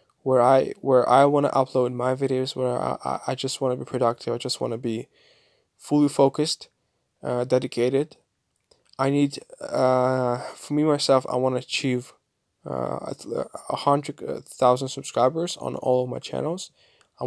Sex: male